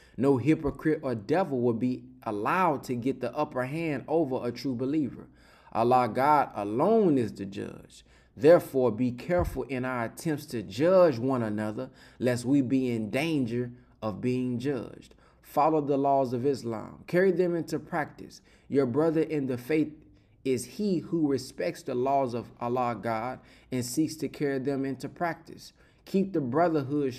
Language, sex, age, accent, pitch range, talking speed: English, male, 20-39, American, 120-145 Hz, 160 wpm